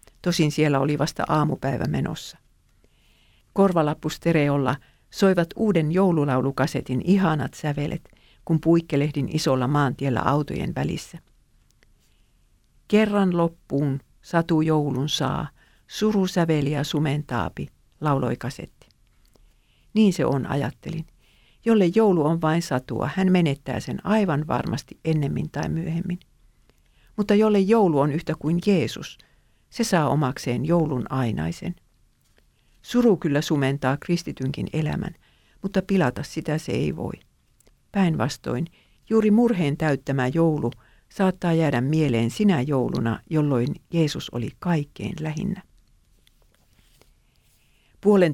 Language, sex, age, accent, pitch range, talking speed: Finnish, female, 50-69, native, 140-175 Hz, 105 wpm